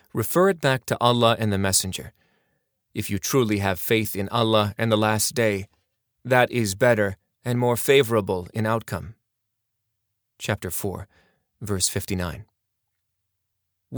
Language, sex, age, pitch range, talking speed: English, male, 30-49, 105-125 Hz, 135 wpm